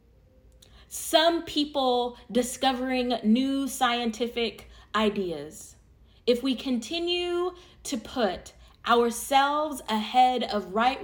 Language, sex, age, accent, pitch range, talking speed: English, female, 20-39, American, 210-270 Hz, 80 wpm